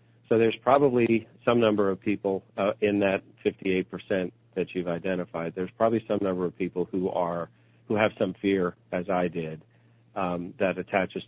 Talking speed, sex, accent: 170 wpm, male, American